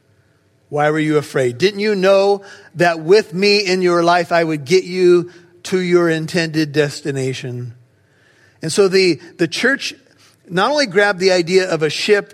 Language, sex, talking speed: English, male, 165 wpm